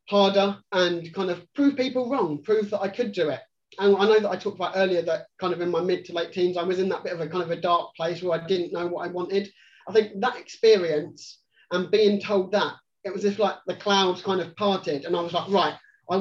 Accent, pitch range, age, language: British, 175-205 Hz, 30-49, English